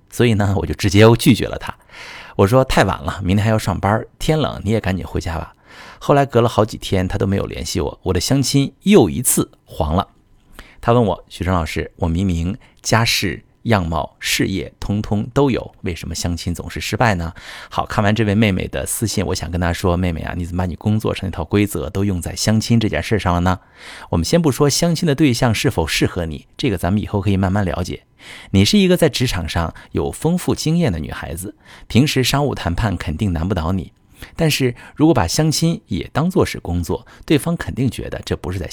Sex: male